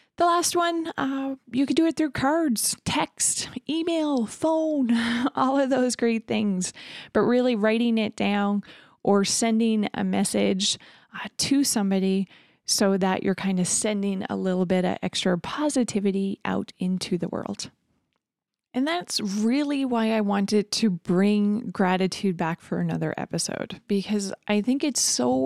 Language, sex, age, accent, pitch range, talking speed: English, female, 20-39, American, 195-250 Hz, 150 wpm